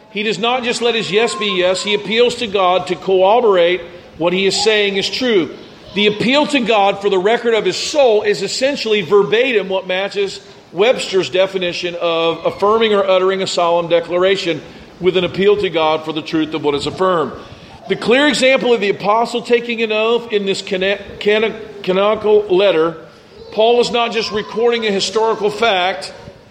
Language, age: English, 50-69